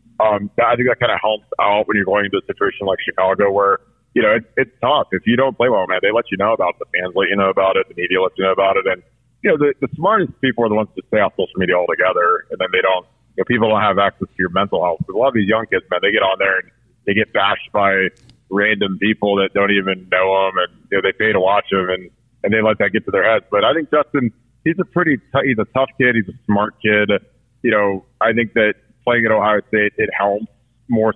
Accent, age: American, 30-49